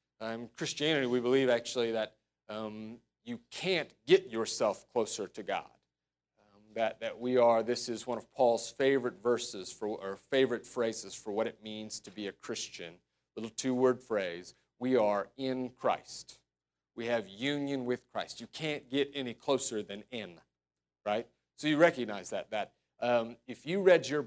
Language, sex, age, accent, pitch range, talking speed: English, male, 40-59, American, 110-135 Hz, 170 wpm